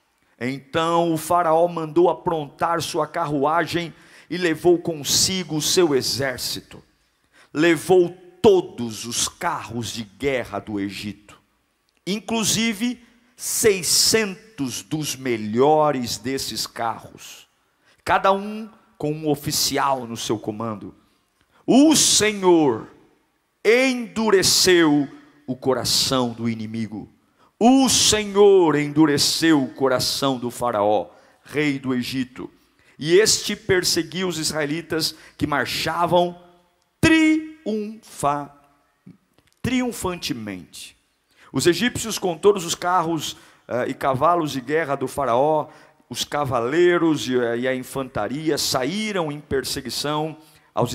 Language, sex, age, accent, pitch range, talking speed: Portuguese, male, 50-69, Brazilian, 130-180 Hz, 95 wpm